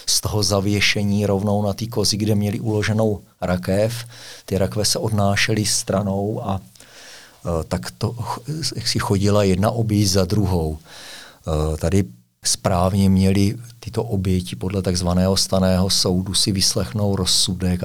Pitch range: 95-105 Hz